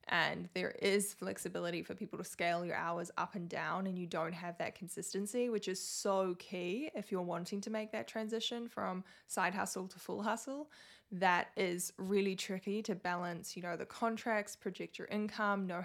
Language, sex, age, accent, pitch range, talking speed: English, female, 20-39, Australian, 180-215 Hz, 190 wpm